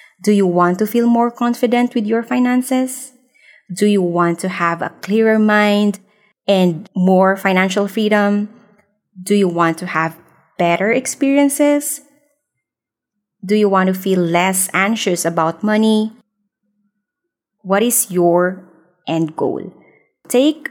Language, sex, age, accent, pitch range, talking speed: English, female, 20-39, Filipino, 175-220 Hz, 130 wpm